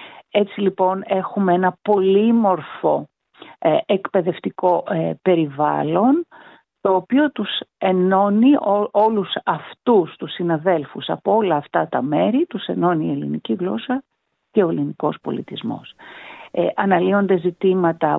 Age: 50-69